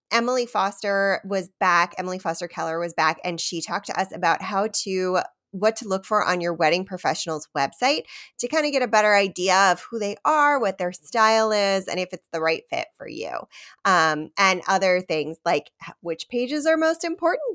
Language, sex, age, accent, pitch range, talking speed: English, female, 20-39, American, 175-235 Hz, 200 wpm